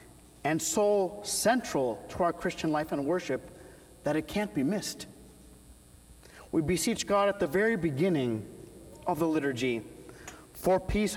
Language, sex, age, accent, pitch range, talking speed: English, male, 40-59, American, 150-195 Hz, 140 wpm